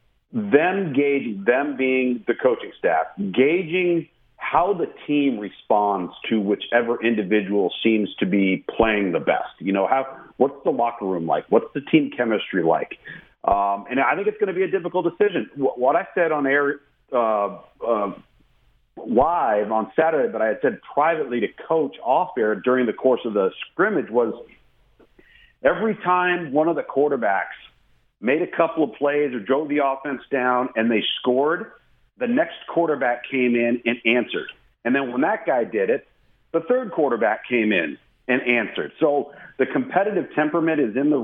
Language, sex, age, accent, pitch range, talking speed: English, male, 50-69, American, 115-165 Hz, 175 wpm